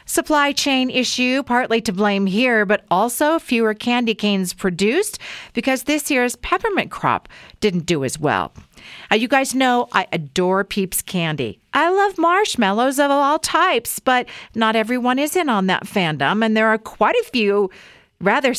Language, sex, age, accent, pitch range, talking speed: English, female, 50-69, American, 190-285 Hz, 165 wpm